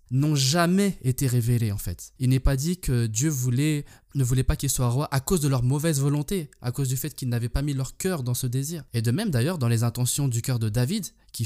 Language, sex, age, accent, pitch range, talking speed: French, male, 20-39, French, 110-130 Hz, 260 wpm